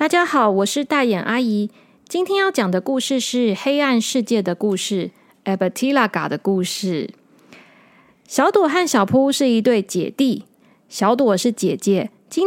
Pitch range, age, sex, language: 210-275 Hz, 20-39, female, Chinese